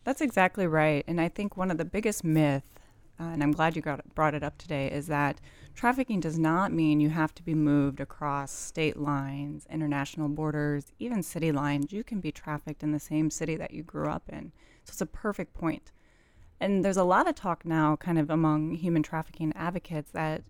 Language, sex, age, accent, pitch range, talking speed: English, female, 30-49, American, 150-170 Hz, 210 wpm